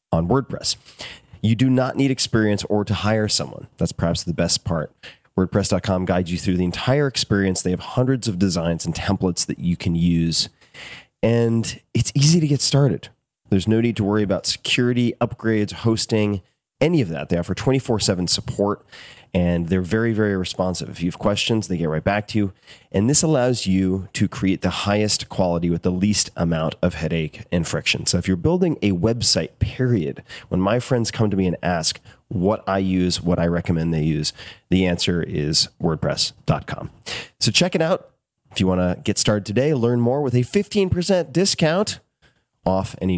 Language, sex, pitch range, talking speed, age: English, male, 90-120 Hz, 185 wpm, 30-49